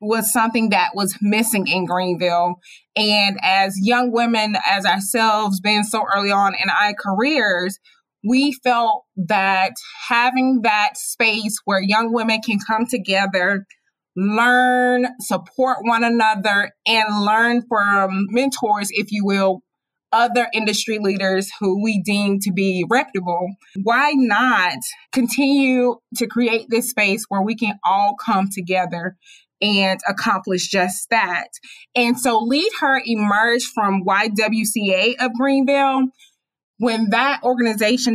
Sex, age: female, 20-39